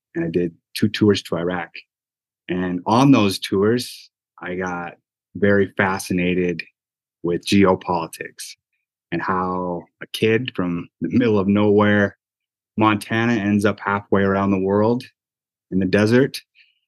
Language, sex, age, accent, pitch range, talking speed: English, male, 20-39, American, 95-110 Hz, 130 wpm